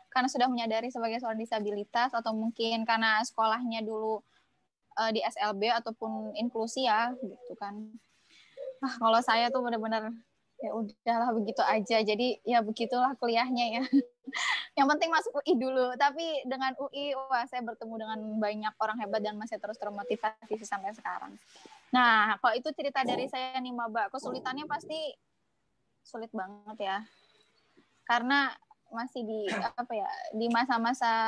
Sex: female